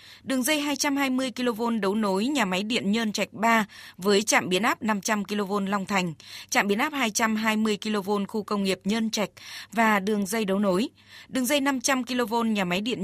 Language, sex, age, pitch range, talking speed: Vietnamese, female, 20-39, 195-240 Hz, 195 wpm